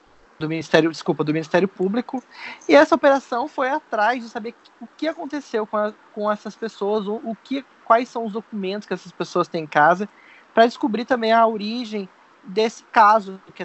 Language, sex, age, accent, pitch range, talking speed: Portuguese, male, 20-39, Brazilian, 170-230 Hz, 180 wpm